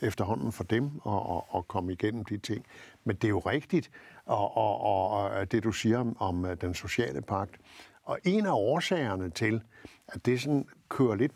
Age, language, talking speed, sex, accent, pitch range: 60-79, Danish, 185 wpm, male, native, 100-130 Hz